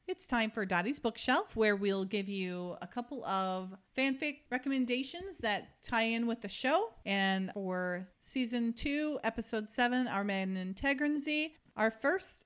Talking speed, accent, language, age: 150 wpm, American, English, 40-59